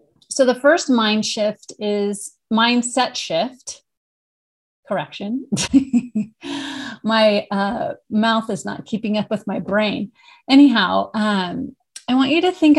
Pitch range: 200-250 Hz